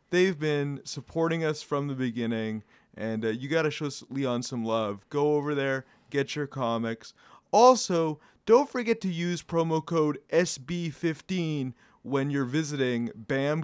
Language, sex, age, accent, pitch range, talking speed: English, male, 30-49, American, 130-175 Hz, 150 wpm